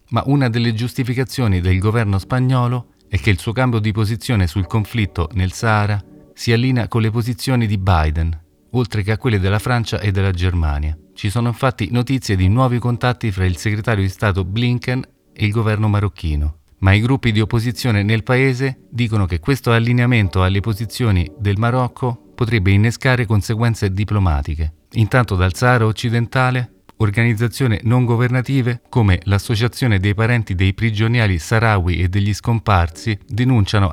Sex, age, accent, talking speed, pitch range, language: male, 40-59, native, 155 wpm, 100-120 Hz, Italian